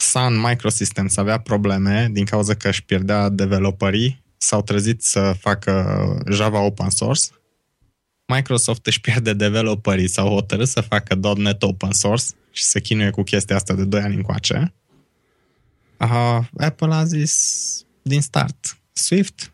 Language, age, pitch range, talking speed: Romanian, 20-39, 100-140 Hz, 140 wpm